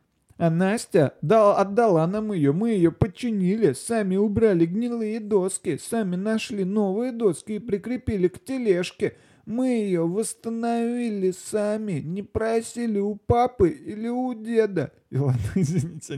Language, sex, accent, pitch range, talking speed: Russian, male, native, 150-215 Hz, 135 wpm